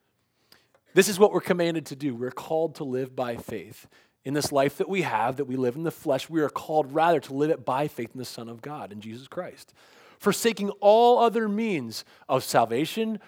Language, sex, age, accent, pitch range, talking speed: English, male, 30-49, American, 130-185 Hz, 215 wpm